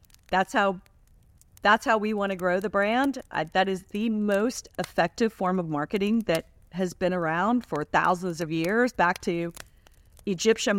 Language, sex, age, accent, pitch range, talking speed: English, female, 40-59, American, 165-205 Hz, 165 wpm